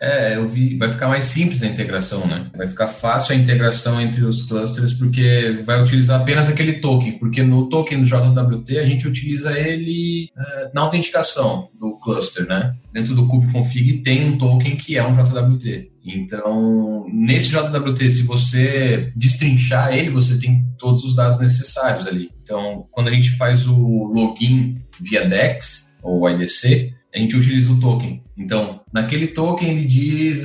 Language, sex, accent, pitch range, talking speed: Portuguese, male, Brazilian, 120-140 Hz, 165 wpm